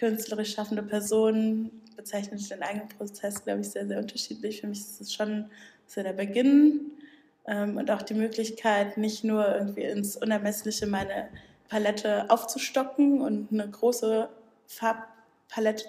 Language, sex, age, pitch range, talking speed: German, female, 20-39, 205-230 Hz, 135 wpm